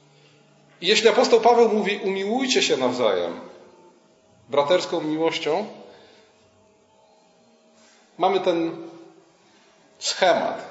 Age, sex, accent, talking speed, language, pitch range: 40-59, male, native, 65 wpm, Polish, 145-200 Hz